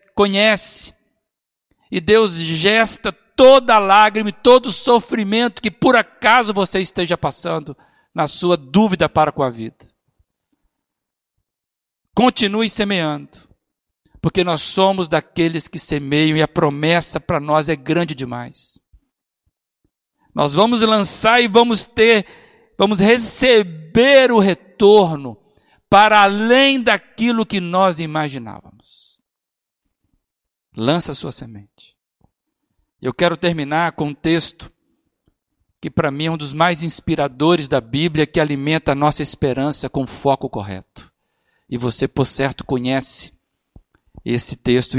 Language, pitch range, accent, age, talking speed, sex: Portuguese, 135-195 Hz, Brazilian, 60-79, 125 wpm, male